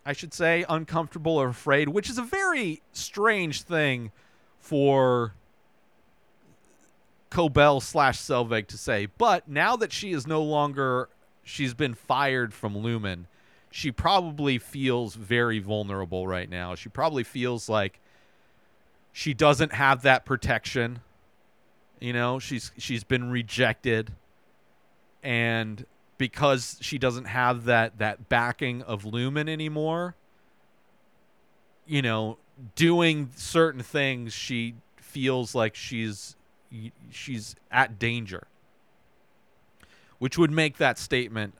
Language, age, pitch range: English, 40-59, 110-140 Hz